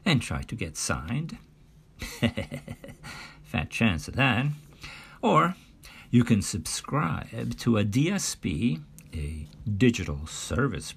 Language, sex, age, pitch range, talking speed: English, male, 50-69, 80-125 Hz, 105 wpm